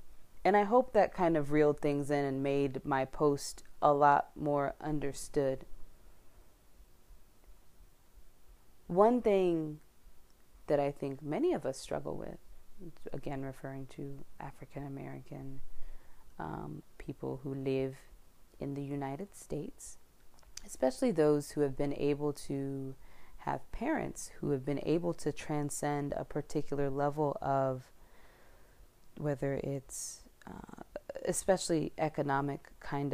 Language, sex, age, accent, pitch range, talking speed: English, female, 20-39, American, 140-170 Hz, 120 wpm